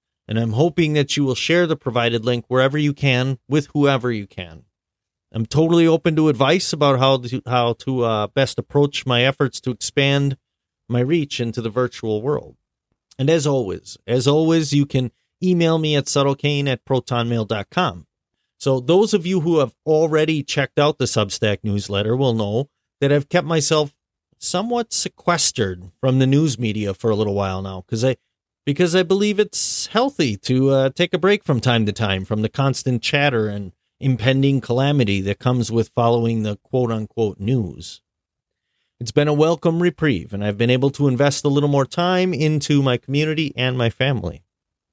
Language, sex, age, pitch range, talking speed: English, male, 30-49, 115-150 Hz, 180 wpm